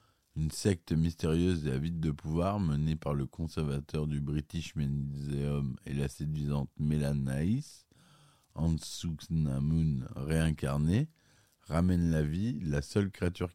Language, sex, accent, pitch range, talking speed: French, male, French, 75-85 Hz, 120 wpm